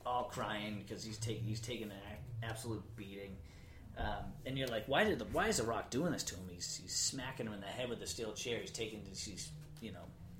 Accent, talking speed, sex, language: American, 240 wpm, male, English